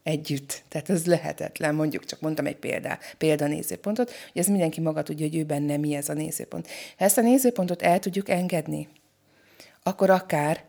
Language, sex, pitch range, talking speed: Hungarian, female, 155-190 Hz, 180 wpm